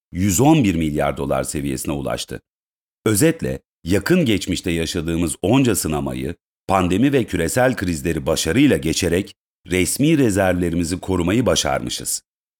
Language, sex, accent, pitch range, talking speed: Turkish, male, native, 85-120 Hz, 100 wpm